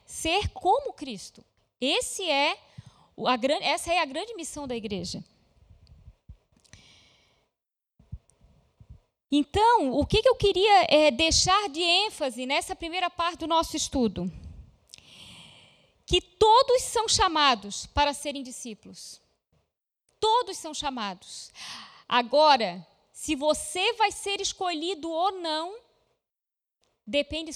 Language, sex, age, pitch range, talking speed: Portuguese, female, 20-39, 250-355 Hz, 100 wpm